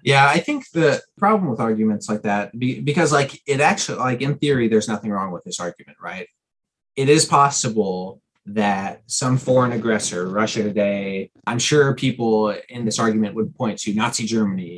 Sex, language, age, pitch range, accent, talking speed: male, English, 30-49, 110-140 Hz, American, 175 wpm